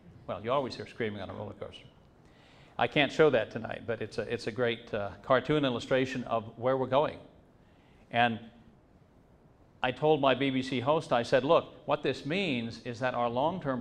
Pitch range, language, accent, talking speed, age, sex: 120-135 Hz, English, American, 180 wpm, 50-69, male